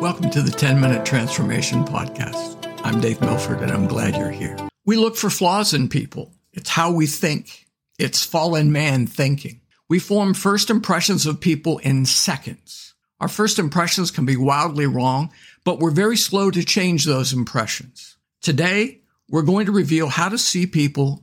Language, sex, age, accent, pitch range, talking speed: English, male, 60-79, American, 135-180 Hz, 170 wpm